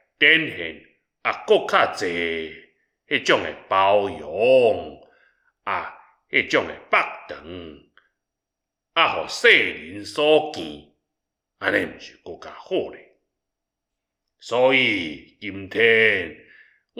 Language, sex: Chinese, male